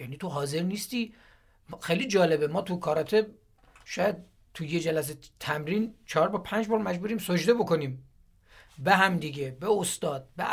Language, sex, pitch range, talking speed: Persian, male, 165-215 Hz, 155 wpm